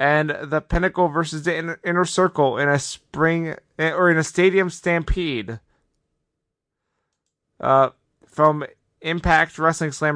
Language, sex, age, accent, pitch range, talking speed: English, male, 30-49, American, 130-155 Hz, 120 wpm